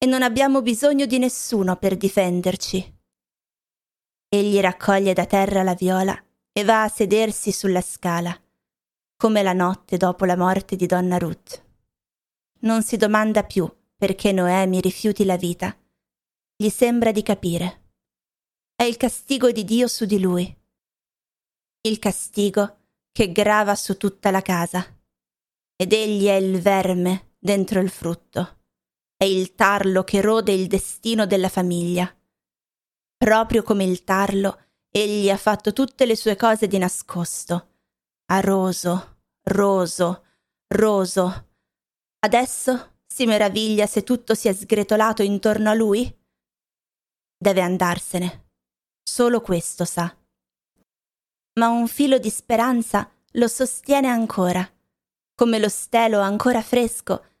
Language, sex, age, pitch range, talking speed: Italian, female, 30-49, 185-220 Hz, 125 wpm